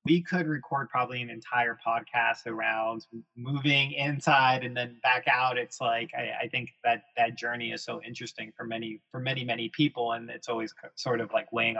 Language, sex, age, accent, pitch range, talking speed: English, male, 20-39, American, 120-150 Hz, 195 wpm